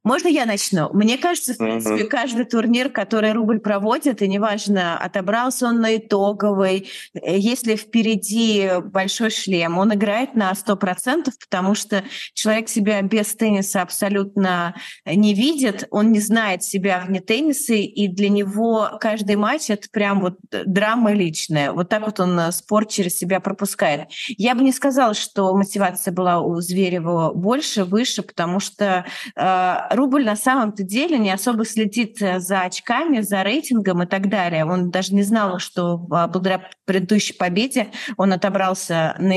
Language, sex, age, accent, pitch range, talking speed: Russian, female, 30-49, native, 185-220 Hz, 150 wpm